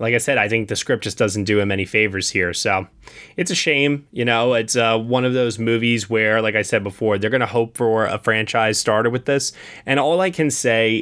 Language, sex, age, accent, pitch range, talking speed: English, male, 20-39, American, 110-135 Hz, 250 wpm